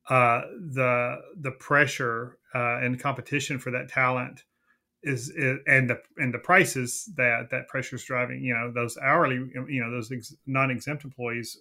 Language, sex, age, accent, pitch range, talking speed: English, male, 30-49, American, 120-145 Hz, 160 wpm